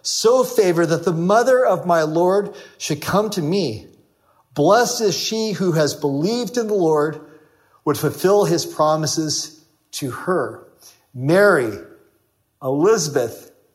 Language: English